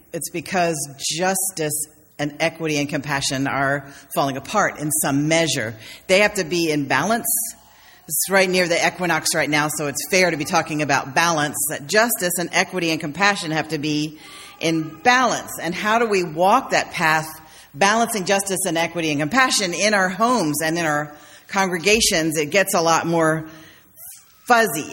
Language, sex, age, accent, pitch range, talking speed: English, female, 40-59, American, 155-200 Hz, 170 wpm